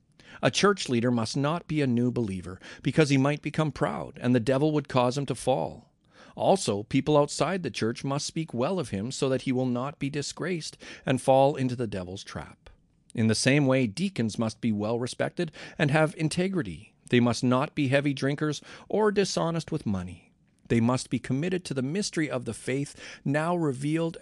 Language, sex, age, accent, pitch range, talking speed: English, male, 50-69, American, 115-155 Hz, 195 wpm